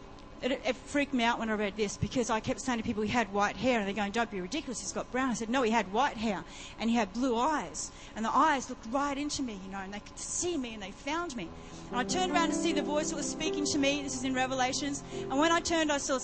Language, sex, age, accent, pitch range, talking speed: English, female, 40-59, Australian, 220-275 Hz, 300 wpm